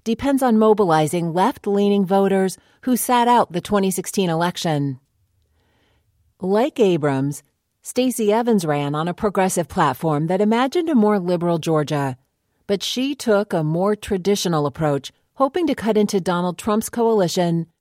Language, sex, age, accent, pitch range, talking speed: English, female, 40-59, American, 160-210 Hz, 135 wpm